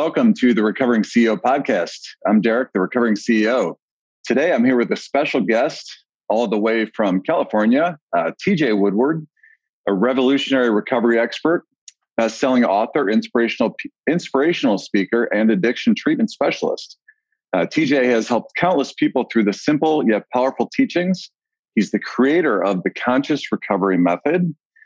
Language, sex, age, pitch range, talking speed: English, male, 40-59, 110-175 Hz, 150 wpm